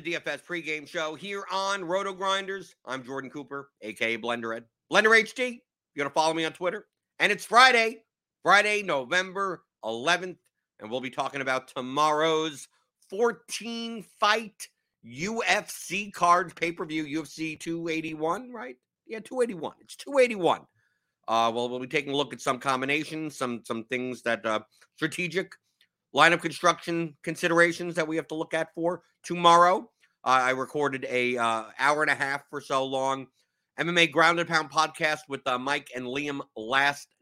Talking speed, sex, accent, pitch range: 150 wpm, male, American, 135-175 Hz